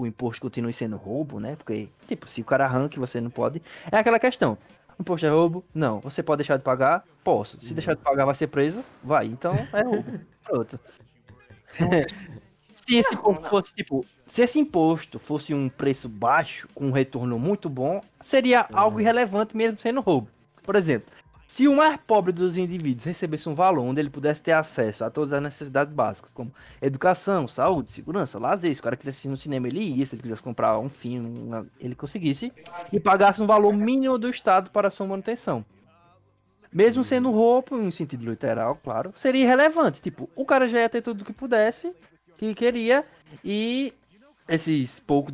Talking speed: 175 wpm